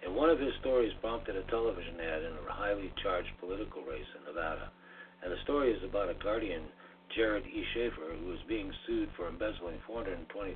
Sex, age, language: male, 60-79, English